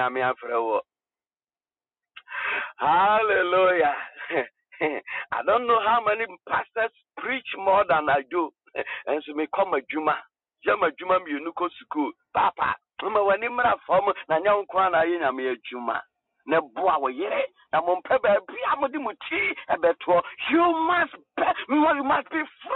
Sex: male